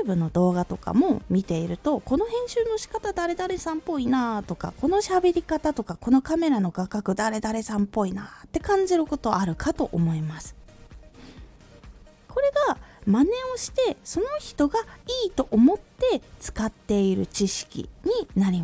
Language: Japanese